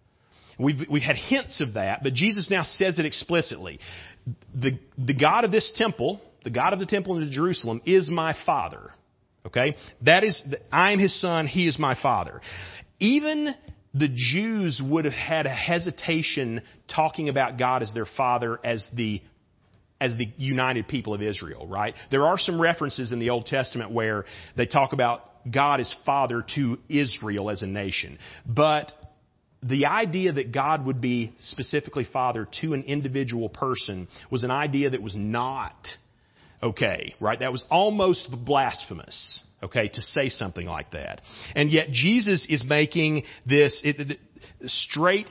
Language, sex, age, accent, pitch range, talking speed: English, male, 40-59, American, 120-165 Hz, 160 wpm